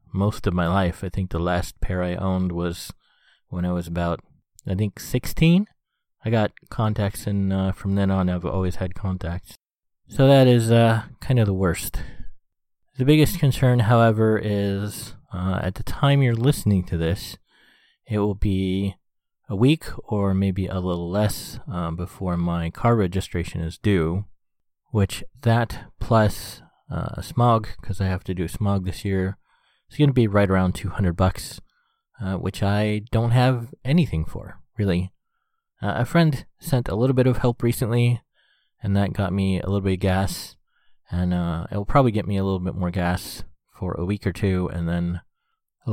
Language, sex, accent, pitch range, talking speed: English, male, American, 90-115 Hz, 175 wpm